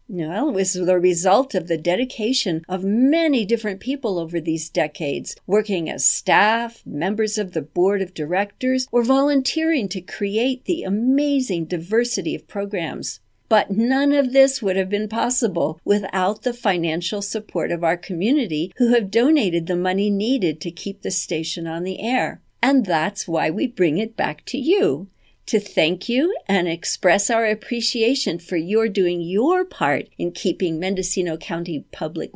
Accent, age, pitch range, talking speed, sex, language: American, 60-79, 175-235 Hz, 160 wpm, female, English